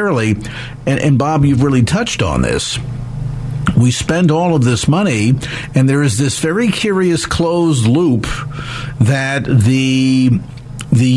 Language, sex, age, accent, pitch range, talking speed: English, male, 50-69, American, 125-160 Hz, 130 wpm